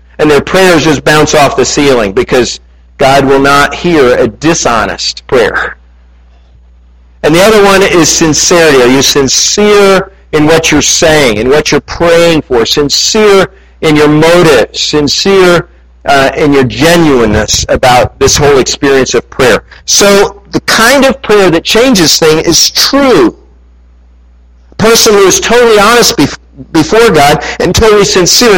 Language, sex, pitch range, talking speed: English, male, 140-195 Hz, 145 wpm